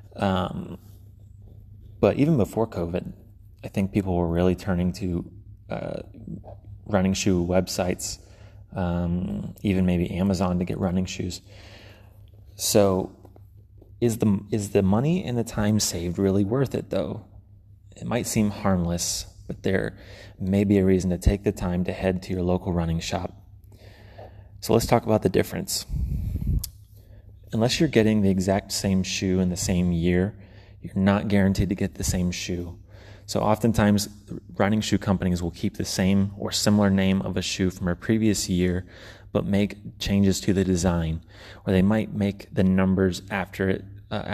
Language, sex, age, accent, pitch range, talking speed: English, male, 30-49, American, 95-105 Hz, 160 wpm